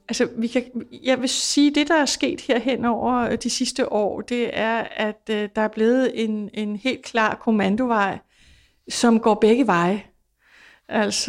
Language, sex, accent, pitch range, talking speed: Danish, female, native, 190-235 Hz, 175 wpm